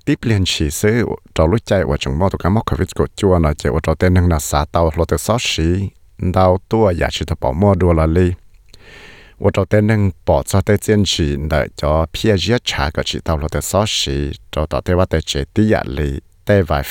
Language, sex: English, male